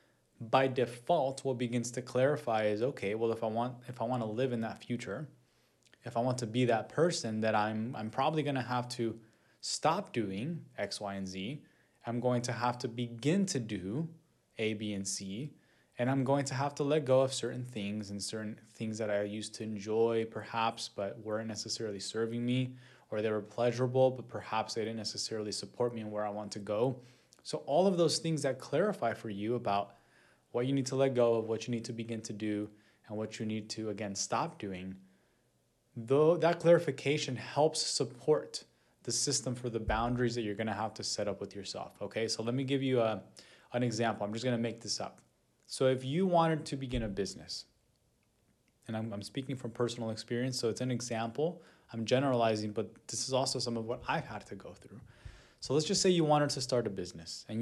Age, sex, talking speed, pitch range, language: 20-39, male, 215 wpm, 110-130 Hz, English